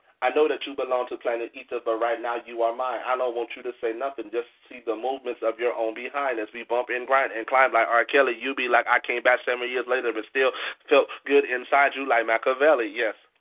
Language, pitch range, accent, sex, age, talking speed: English, 115-130 Hz, American, male, 30-49, 255 wpm